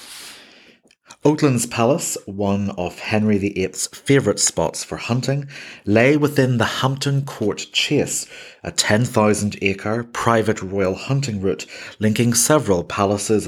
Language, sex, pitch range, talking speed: English, male, 95-115 Hz, 110 wpm